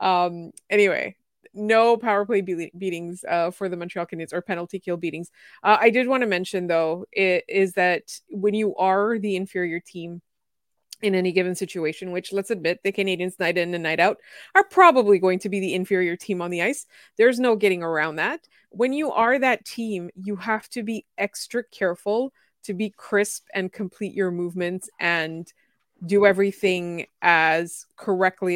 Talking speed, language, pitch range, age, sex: 180 wpm, English, 180-220 Hz, 20-39, female